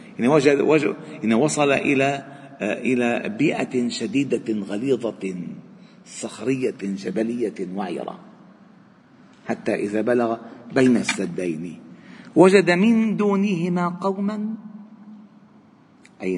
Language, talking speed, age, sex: Arabic, 85 wpm, 50-69, male